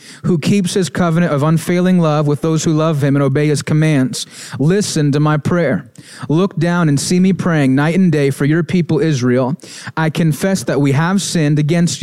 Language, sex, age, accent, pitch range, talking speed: English, male, 30-49, American, 150-180 Hz, 200 wpm